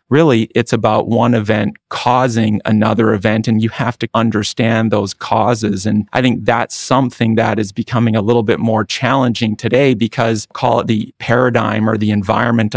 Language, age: English, 30-49